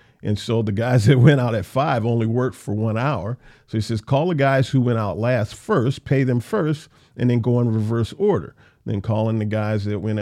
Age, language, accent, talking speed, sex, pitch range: 50-69, English, American, 240 wpm, male, 110-155 Hz